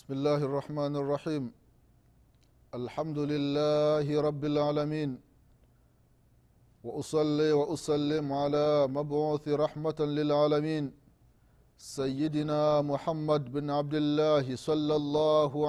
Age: 30-49